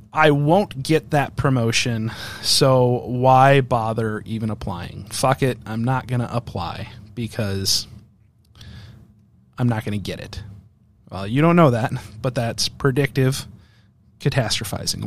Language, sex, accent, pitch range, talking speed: English, male, American, 110-130 Hz, 130 wpm